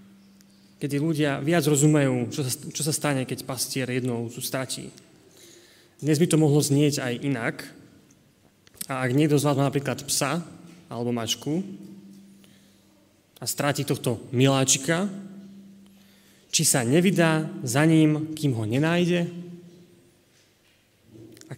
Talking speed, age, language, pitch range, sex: 110 wpm, 20-39, Slovak, 130-155 Hz, male